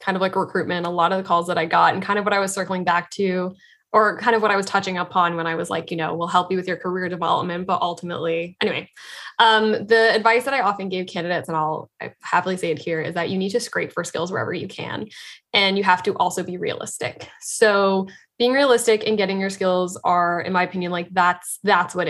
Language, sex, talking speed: English, female, 250 wpm